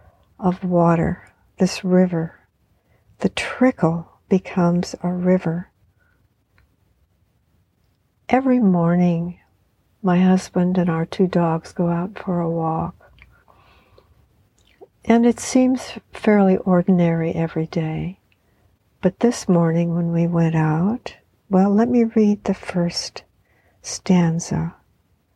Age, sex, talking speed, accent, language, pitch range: 60-79, female, 100 wpm, American, English, 160-185 Hz